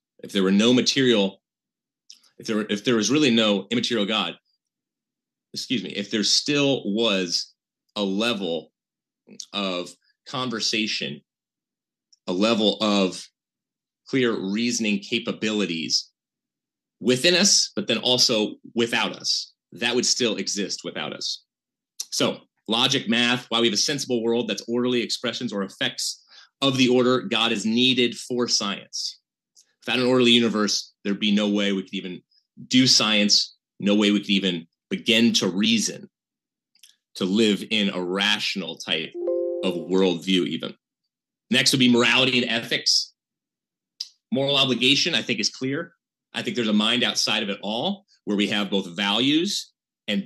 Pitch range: 100-125 Hz